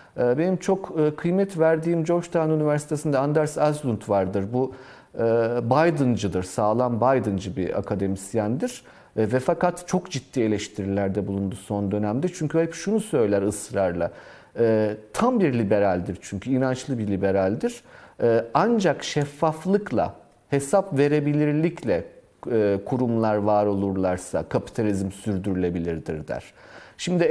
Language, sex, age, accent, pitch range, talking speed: Turkish, male, 40-59, native, 115-170 Hz, 100 wpm